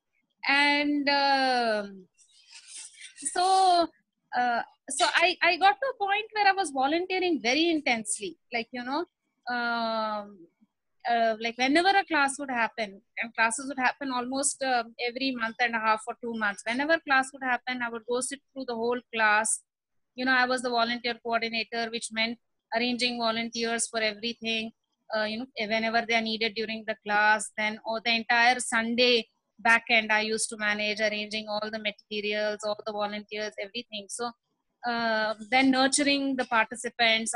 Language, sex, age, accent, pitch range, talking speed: English, female, 20-39, Indian, 225-285 Hz, 165 wpm